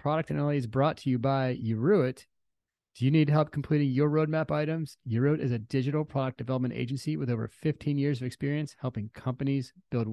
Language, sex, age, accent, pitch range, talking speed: English, male, 30-49, American, 120-145 Hz, 185 wpm